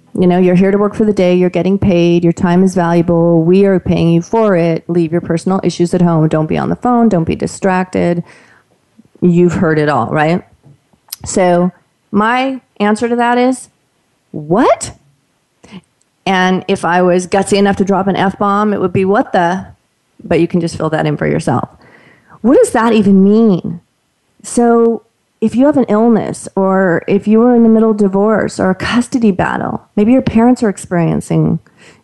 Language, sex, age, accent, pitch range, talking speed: English, female, 30-49, American, 175-225 Hz, 190 wpm